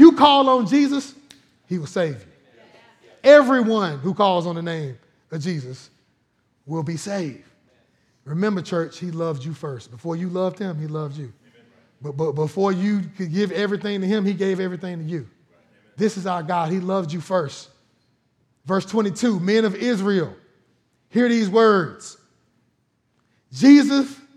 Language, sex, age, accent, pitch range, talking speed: English, male, 30-49, American, 165-245 Hz, 155 wpm